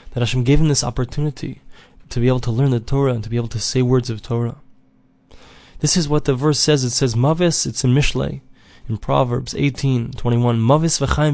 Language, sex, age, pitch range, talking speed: English, male, 20-39, 125-150 Hz, 210 wpm